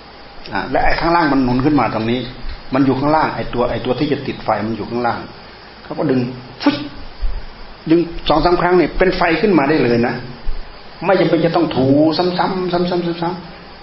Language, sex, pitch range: Thai, male, 120-150 Hz